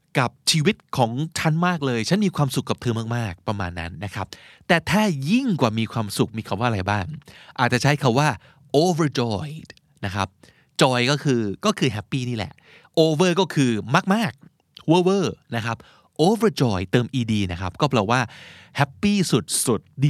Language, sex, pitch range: Thai, male, 105-150 Hz